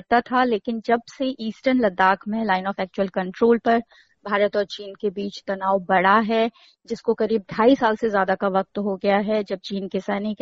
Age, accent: 20-39, native